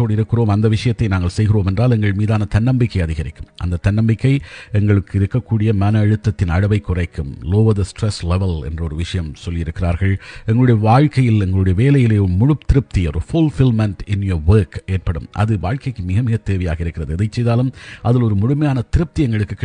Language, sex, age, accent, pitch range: Tamil, male, 50-69, native, 90-115 Hz